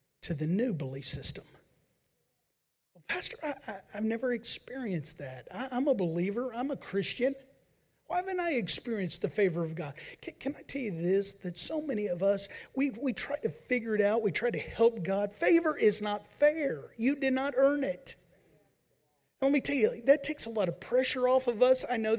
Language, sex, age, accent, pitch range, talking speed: English, male, 40-59, American, 190-270 Hz, 200 wpm